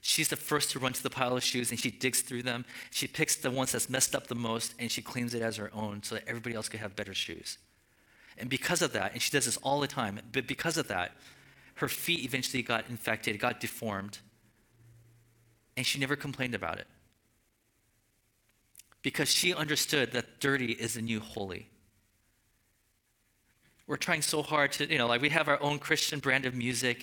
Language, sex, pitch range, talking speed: English, male, 110-135 Hz, 205 wpm